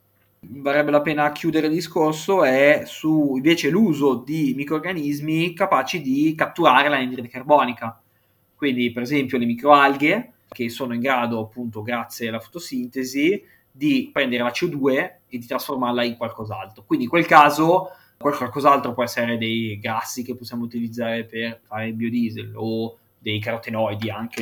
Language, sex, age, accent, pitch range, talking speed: Italian, male, 20-39, native, 115-145 Hz, 145 wpm